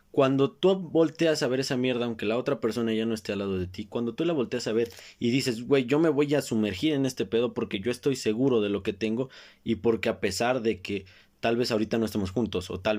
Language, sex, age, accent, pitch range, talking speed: Spanish, male, 20-39, Mexican, 105-135 Hz, 265 wpm